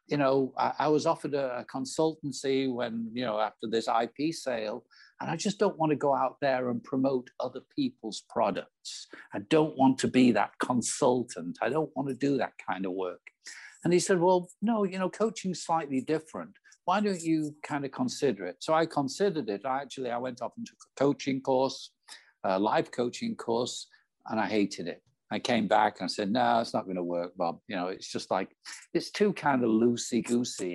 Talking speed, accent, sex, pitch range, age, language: 210 wpm, British, male, 120-165 Hz, 60-79, English